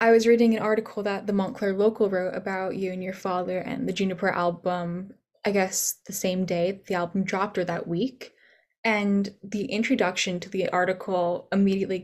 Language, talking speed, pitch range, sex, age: English, 185 wpm, 190-230 Hz, female, 10-29